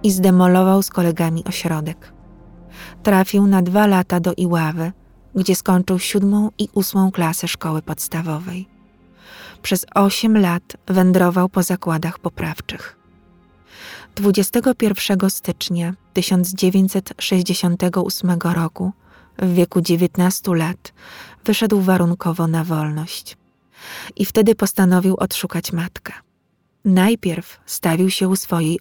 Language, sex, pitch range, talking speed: Polish, female, 170-195 Hz, 100 wpm